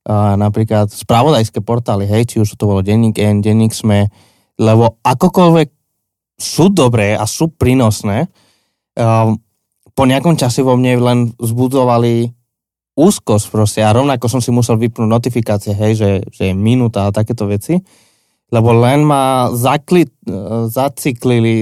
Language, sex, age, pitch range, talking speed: Slovak, male, 20-39, 110-130 Hz, 135 wpm